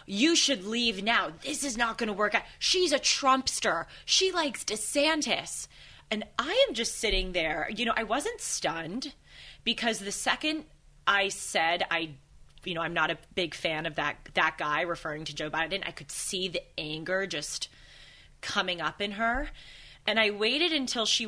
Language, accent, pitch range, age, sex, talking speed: English, American, 165-235 Hz, 30-49, female, 180 wpm